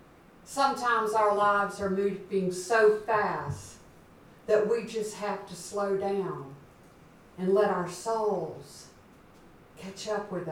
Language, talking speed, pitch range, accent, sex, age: English, 120 wpm, 175-210 Hz, American, female, 60-79